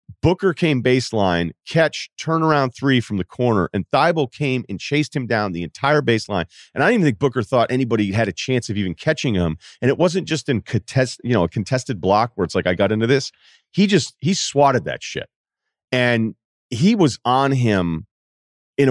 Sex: male